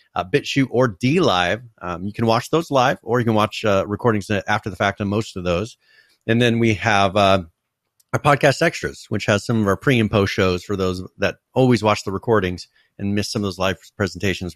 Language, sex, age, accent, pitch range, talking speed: English, male, 30-49, American, 95-120 Hz, 225 wpm